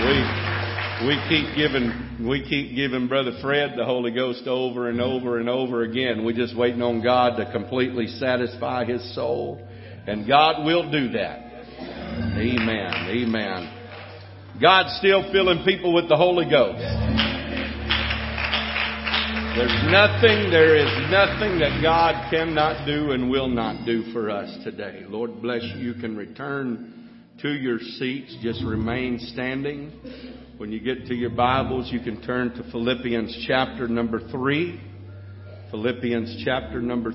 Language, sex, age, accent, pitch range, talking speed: English, male, 50-69, American, 100-125 Hz, 140 wpm